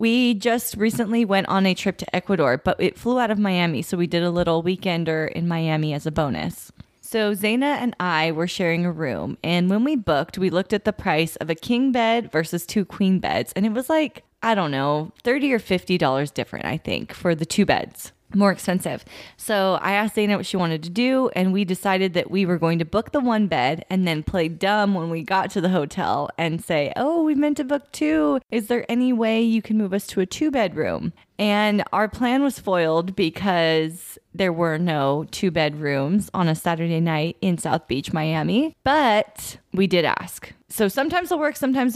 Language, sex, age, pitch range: English, female, 20-39, 165-225 Hz